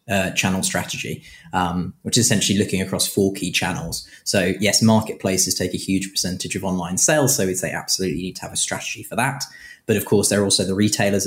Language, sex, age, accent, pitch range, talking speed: English, male, 20-39, British, 90-105 Hz, 220 wpm